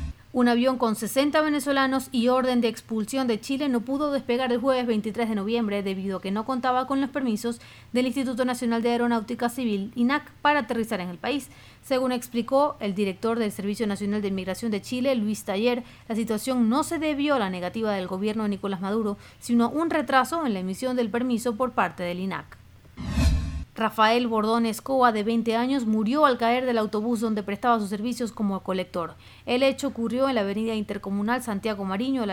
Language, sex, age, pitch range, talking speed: Spanish, female, 40-59, 205-255 Hz, 195 wpm